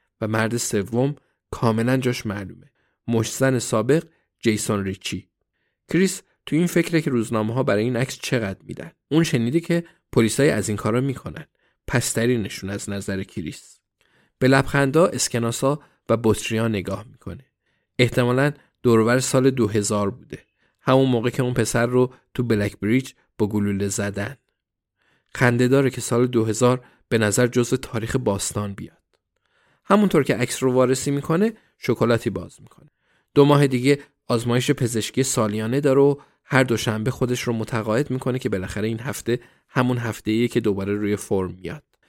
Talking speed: 150 wpm